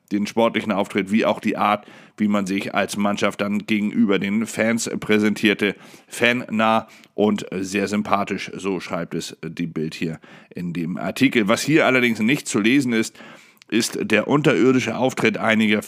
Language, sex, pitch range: German, male, 100-115 Hz